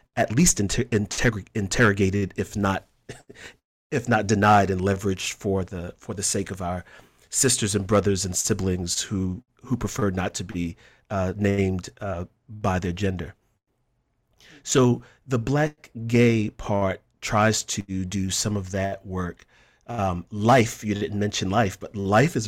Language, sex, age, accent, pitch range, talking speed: English, male, 40-59, American, 95-115 Hz, 150 wpm